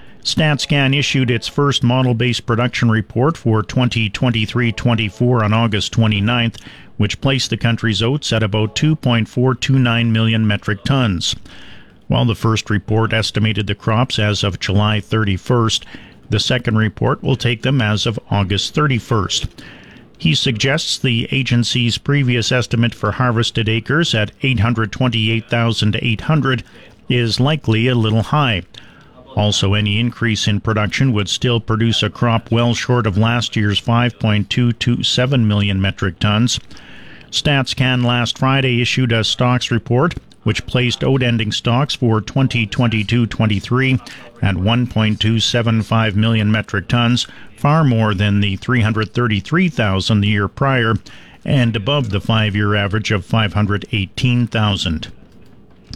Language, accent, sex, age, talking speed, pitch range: English, American, male, 50-69, 120 wpm, 105-125 Hz